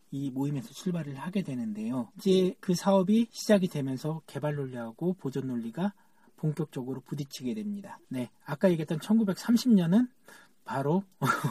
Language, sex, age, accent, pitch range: Korean, male, 40-59, native, 145-215 Hz